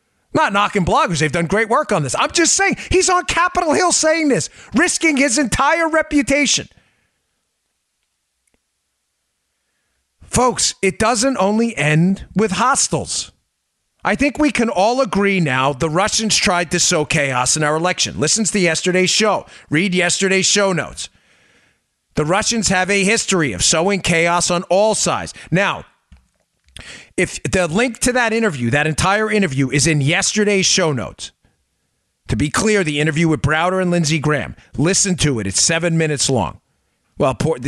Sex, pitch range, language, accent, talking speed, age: male, 155-220 Hz, English, American, 155 wpm, 40-59